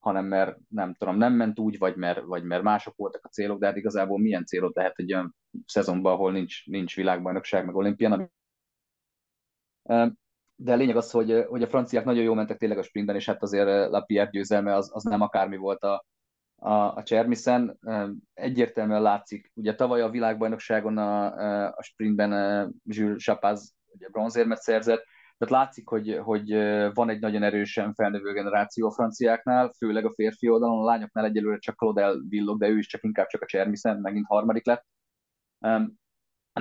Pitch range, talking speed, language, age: 105-115 Hz, 170 wpm, Hungarian, 30-49